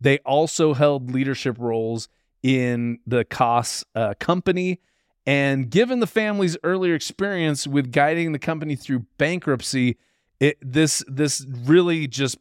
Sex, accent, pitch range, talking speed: male, American, 125-155 Hz, 130 wpm